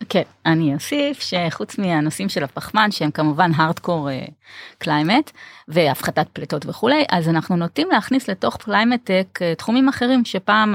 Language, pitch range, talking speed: Hebrew, 155-195 Hz, 140 wpm